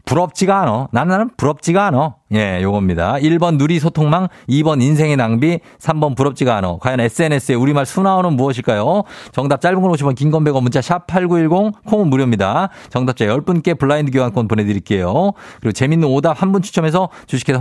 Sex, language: male, Korean